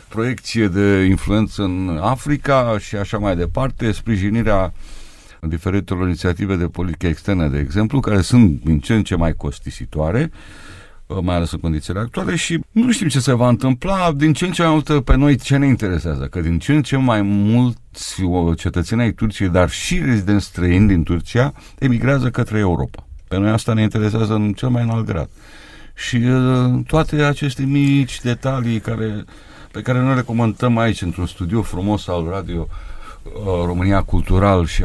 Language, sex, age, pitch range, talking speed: Romanian, male, 50-69, 90-125 Hz, 165 wpm